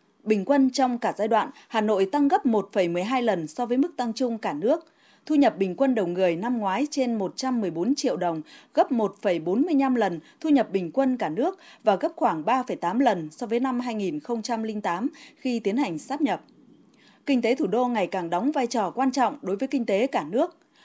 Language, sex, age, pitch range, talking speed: Vietnamese, female, 20-39, 205-275 Hz, 205 wpm